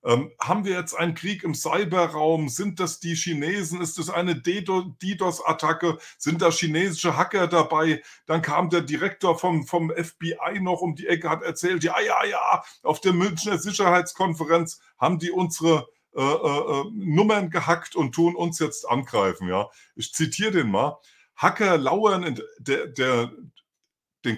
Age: 50-69